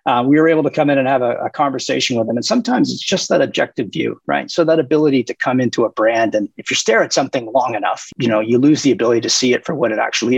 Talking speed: 295 wpm